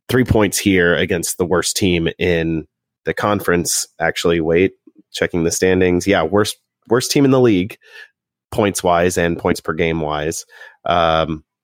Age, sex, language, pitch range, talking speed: 30-49, male, English, 85-100 Hz, 135 wpm